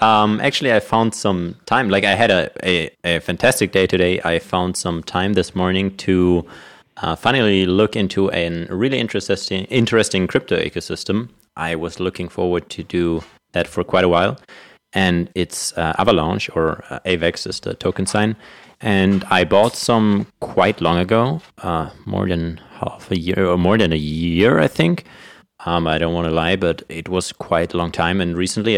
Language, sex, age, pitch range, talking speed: English, male, 30-49, 85-105 Hz, 185 wpm